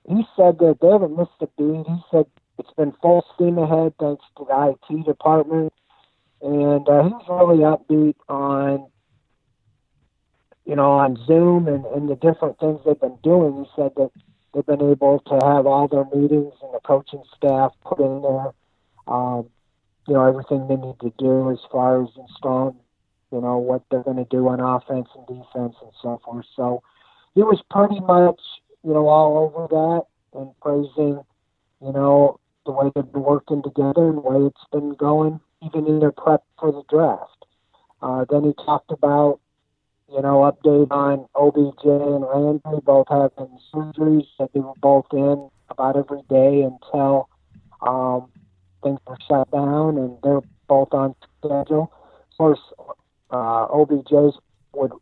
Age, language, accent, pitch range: 50-69, English, American, 135-155 Hz